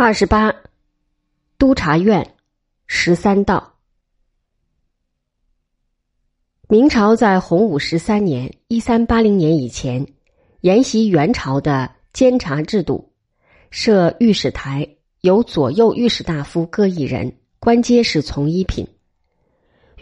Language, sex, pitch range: Chinese, female, 140-230 Hz